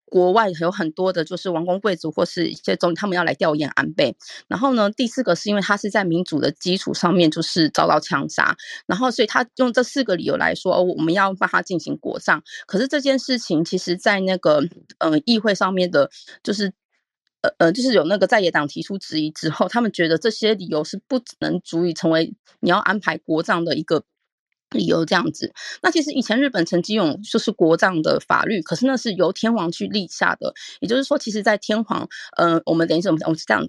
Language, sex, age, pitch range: Chinese, female, 20-39, 175-235 Hz